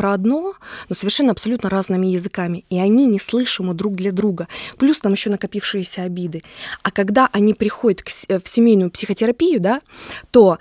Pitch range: 185-235 Hz